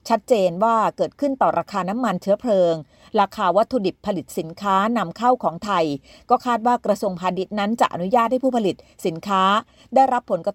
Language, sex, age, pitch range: Thai, female, 30-49, 185-240 Hz